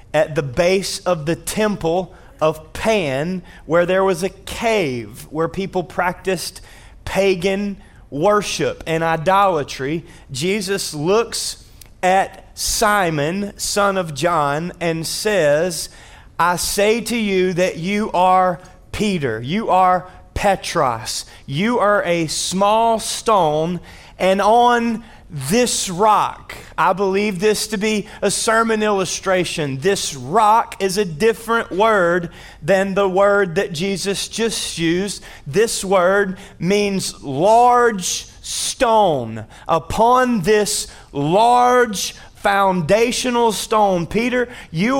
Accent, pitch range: American, 175-220 Hz